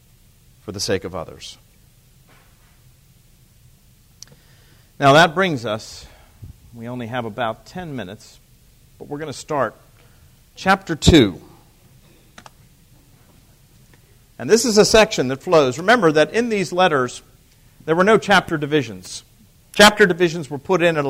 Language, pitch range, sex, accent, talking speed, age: English, 125-165 Hz, male, American, 130 wpm, 50-69